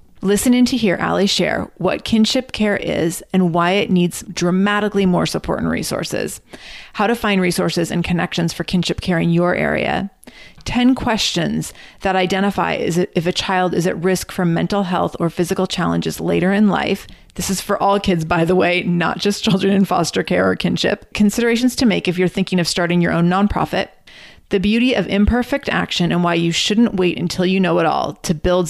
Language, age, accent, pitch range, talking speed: English, 30-49, American, 175-205 Hz, 195 wpm